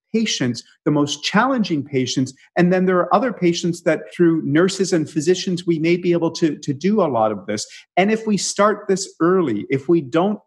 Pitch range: 130-175 Hz